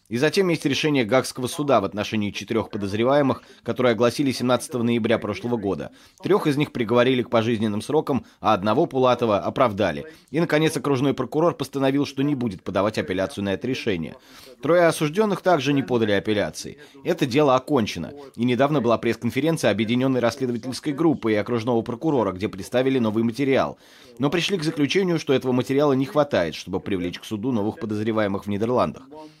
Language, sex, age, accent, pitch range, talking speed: Russian, male, 20-39, native, 115-145 Hz, 165 wpm